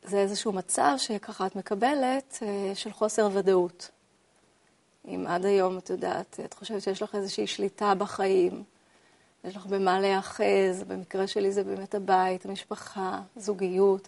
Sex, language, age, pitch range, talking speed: female, Hebrew, 30-49, 185-210 Hz, 135 wpm